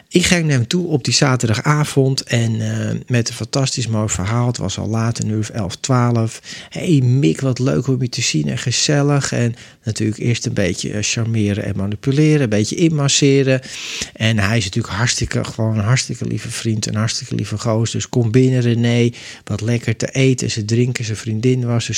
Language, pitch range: Dutch, 110-135 Hz